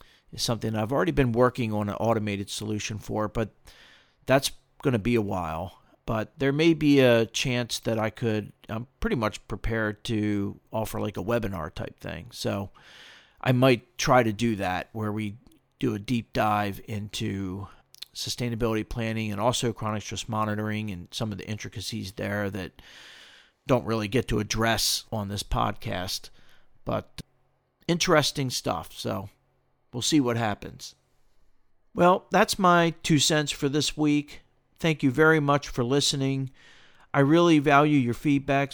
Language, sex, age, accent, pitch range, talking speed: English, male, 40-59, American, 110-140 Hz, 155 wpm